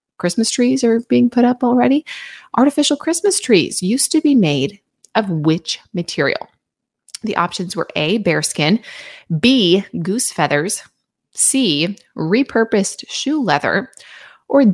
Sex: female